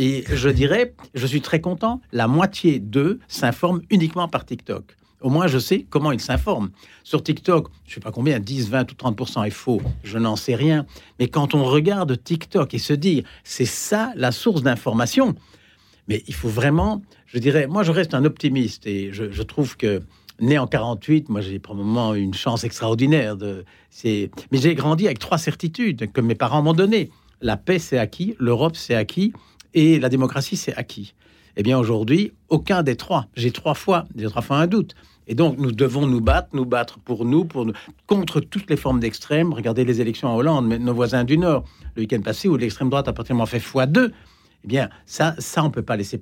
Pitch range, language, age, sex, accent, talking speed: 115-160 Hz, French, 60-79, male, French, 210 wpm